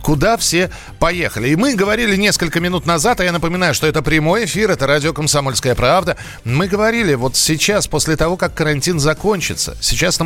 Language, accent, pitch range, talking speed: Russian, native, 130-175 Hz, 175 wpm